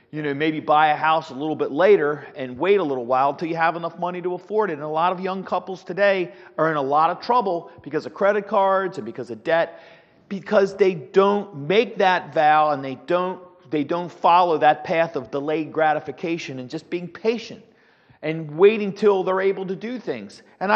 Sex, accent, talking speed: male, American, 215 wpm